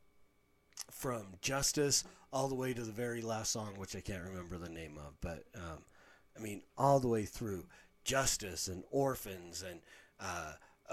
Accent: American